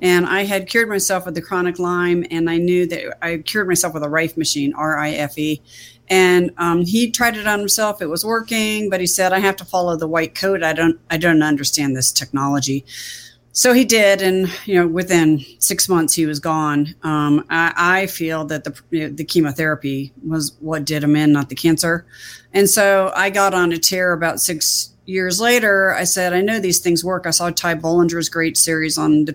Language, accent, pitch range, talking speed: English, American, 160-190 Hz, 215 wpm